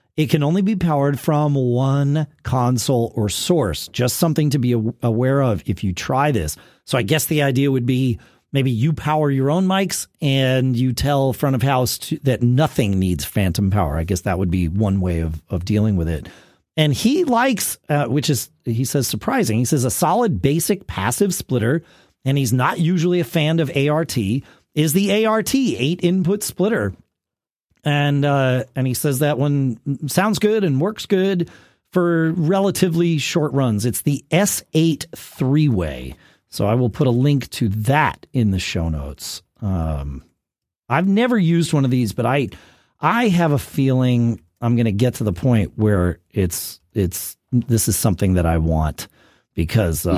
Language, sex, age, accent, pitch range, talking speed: English, male, 40-59, American, 110-165 Hz, 180 wpm